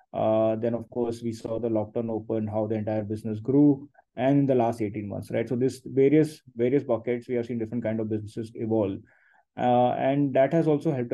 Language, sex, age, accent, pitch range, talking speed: English, male, 20-39, Indian, 110-125 Hz, 210 wpm